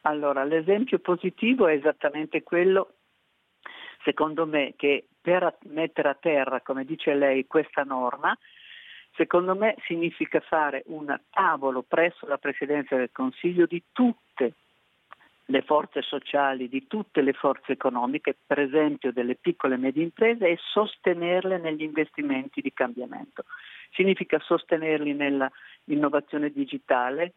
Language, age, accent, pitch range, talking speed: Italian, 50-69, native, 145-185 Hz, 125 wpm